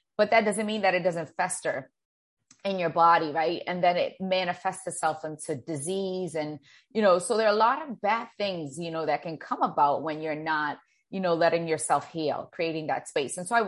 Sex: female